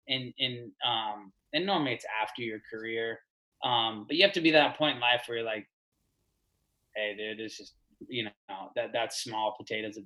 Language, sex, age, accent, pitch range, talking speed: English, male, 20-39, American, 125-170 Hz, 195 wpm